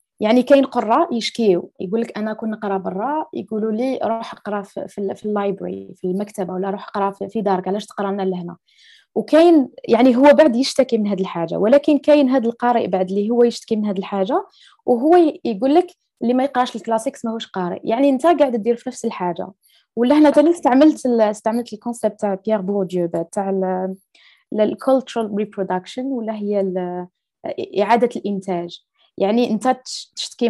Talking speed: 155 wpm